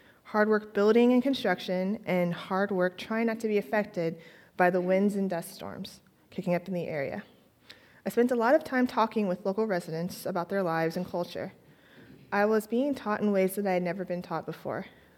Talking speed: 205 wpm